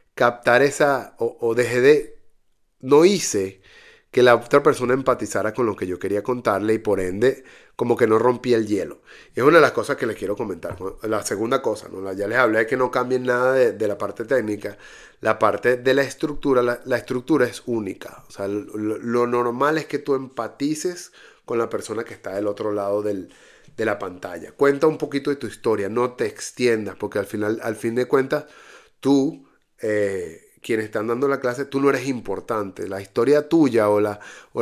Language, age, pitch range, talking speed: Spanish, 30-49, 110-150 Hz, 205 wpm